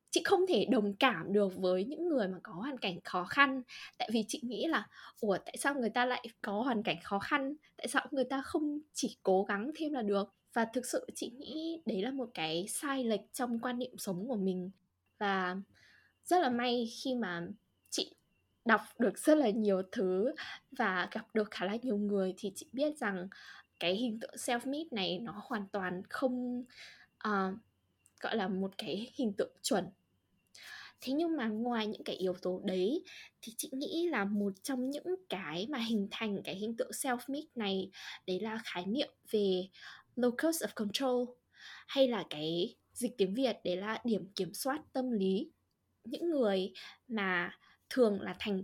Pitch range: 195-260 Hz